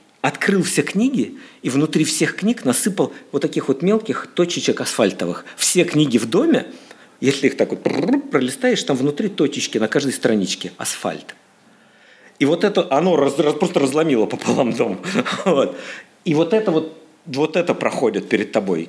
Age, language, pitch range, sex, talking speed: 50-69, Russian, 150-205 Hz, male, 160 wpm